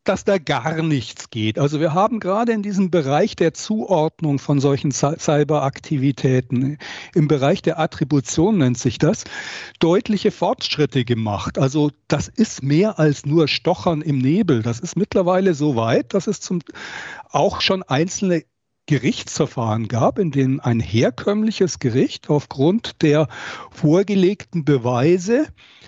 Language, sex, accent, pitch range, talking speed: German, male, German, 140-200 Hz, 135 wpm